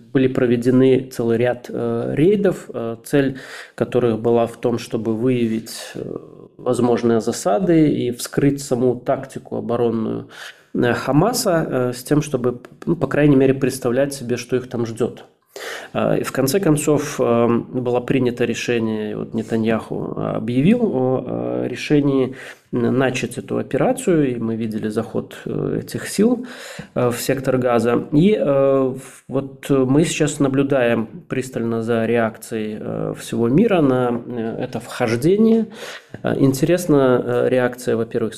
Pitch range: 115-135 Hz